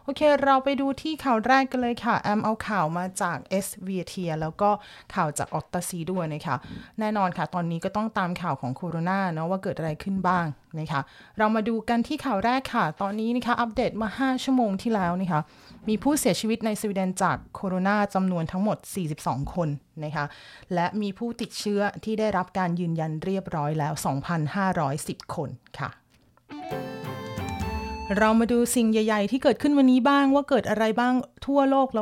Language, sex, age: Thai, female, 30-49